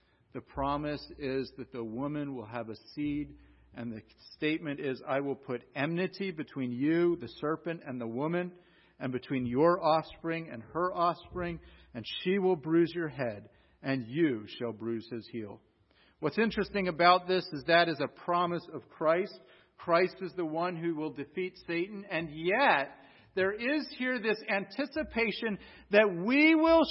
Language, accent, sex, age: English, American, male, 50-69